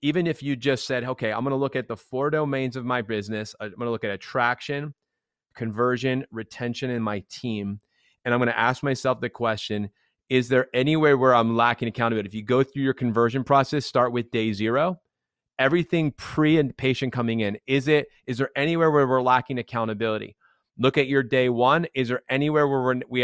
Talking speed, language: 205 wpm, English